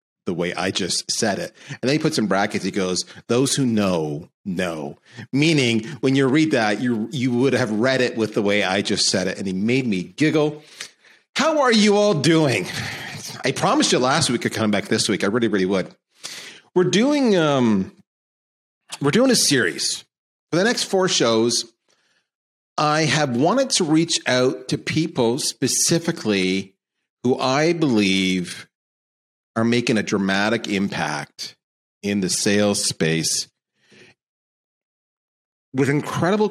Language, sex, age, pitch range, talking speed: English, male, 40-59, 105-155 Hz, 160 wpm